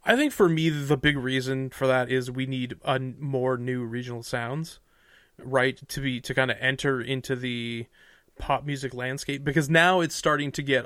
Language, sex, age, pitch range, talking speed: English, male, 30-49, 130-150 Hz, 190 wpm